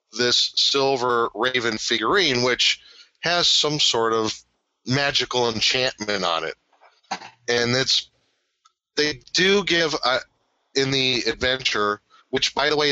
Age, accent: 40-59, American